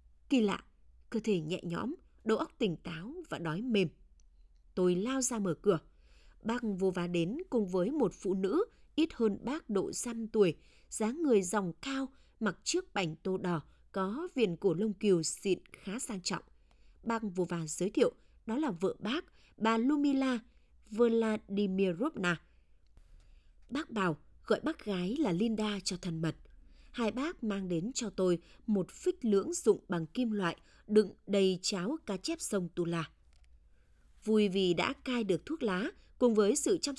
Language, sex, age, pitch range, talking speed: Vietnamese, female, 20-39, 175-240 Hz, 170 wpm